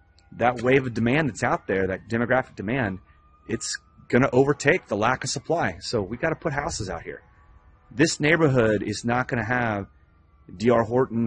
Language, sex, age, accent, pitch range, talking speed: English, male, 30-49, American, 90-120 Hz, 185 wpm